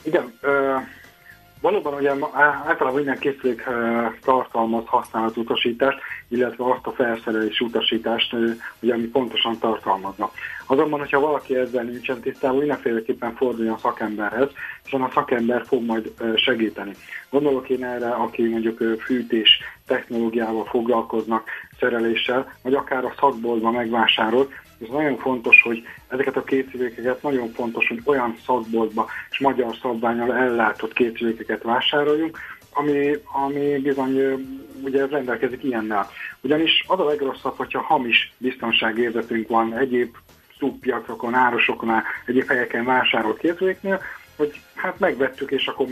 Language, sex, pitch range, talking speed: Hungarian, male, 115-135 Hz, 125 wpm